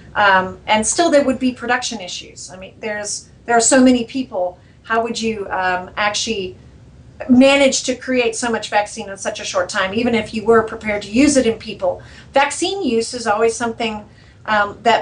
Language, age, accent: English, 40-59, American